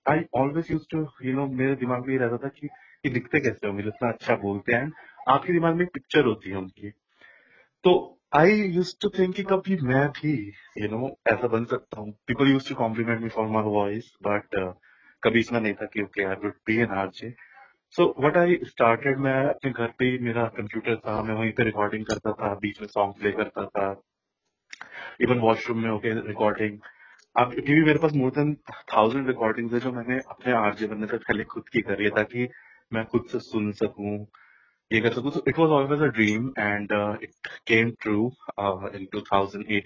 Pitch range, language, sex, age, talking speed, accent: 105-125 Hz, English, male, 30-49, 110 wpm, Indian